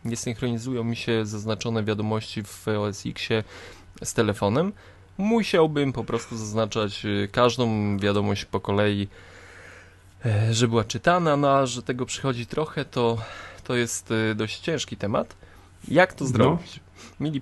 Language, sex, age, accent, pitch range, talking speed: Polish, male, 20-39, native, 95-125 Hz, 125 wpm